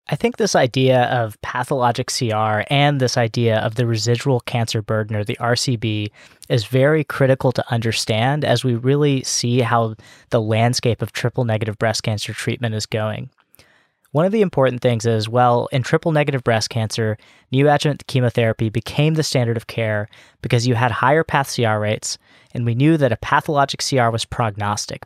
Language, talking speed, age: English, 175 wpm, 10-29